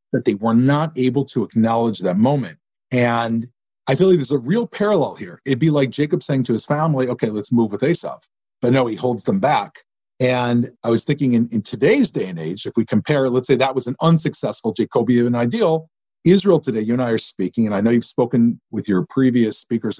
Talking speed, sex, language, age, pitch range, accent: 220 wpm, male, English, 40-59, 120-160 Hz, American